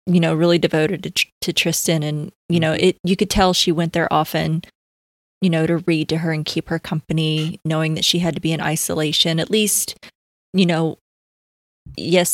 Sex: female